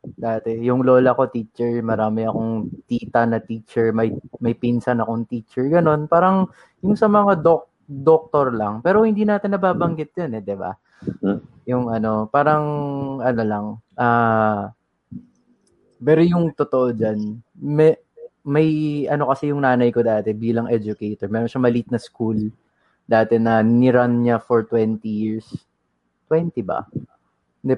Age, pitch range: 20-39, 110-140 Hz